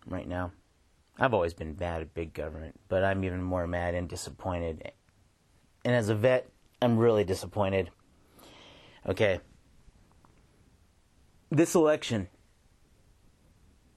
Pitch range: 85-115 Hz